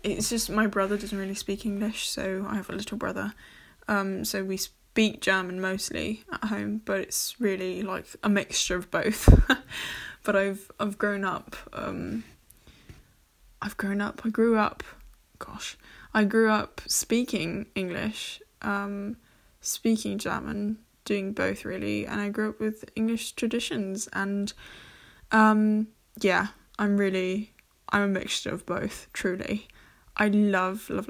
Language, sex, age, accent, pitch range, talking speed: English, female, 10-29, British, 195-220 Hz, 145 wpm